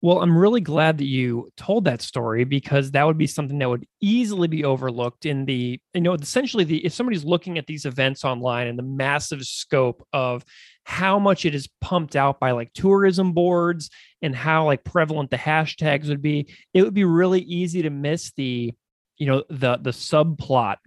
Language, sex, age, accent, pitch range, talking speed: English, male, 30-49, American, 125-160 Hz, 195 wpm